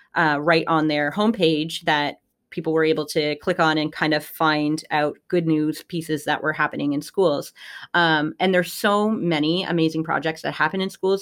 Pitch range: 155-215 Hz